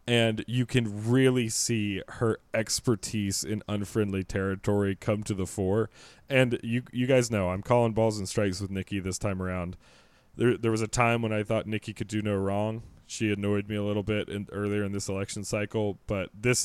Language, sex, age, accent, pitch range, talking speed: English, male, 20-39, American, 100-115 Hz, 200 wpm